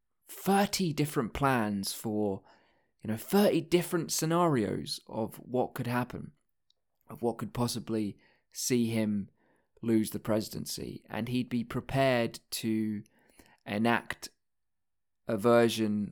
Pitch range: 105-135 Hz